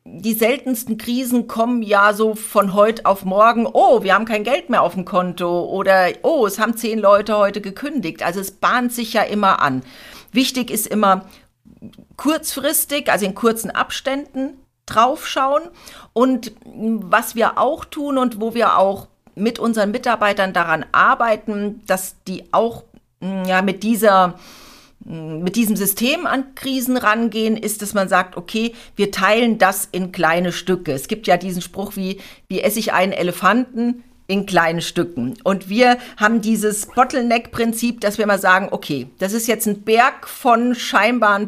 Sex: female